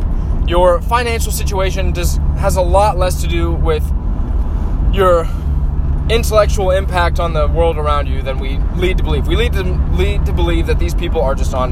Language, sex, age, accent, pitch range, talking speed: English, male, 20-39, American, 75-90 Hz, 185 wpm